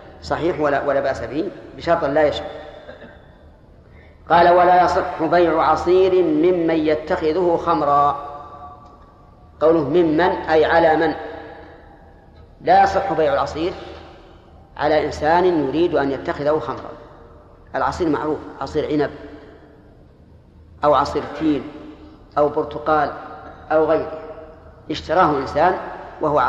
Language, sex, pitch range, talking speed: Arabic, female, 140-175 Hz, 100 wpm